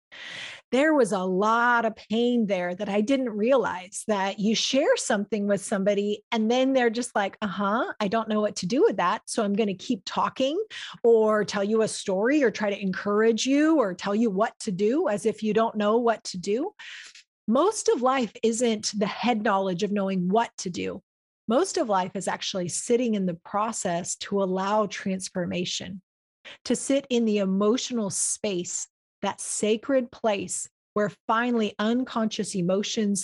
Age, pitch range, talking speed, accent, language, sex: 30-49, 195-230 Hz, 180 wpm, American, English, female